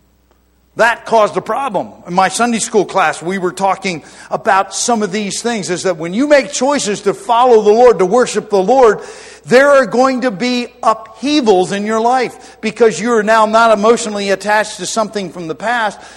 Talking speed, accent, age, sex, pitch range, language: 190 wpm, American, 50-69, male, 175-230 Hz, English